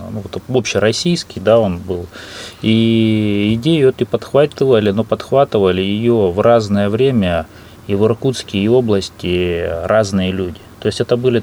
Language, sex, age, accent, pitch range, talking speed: Russian, male, 20-39, native, 95-115 Hz, 125 wpm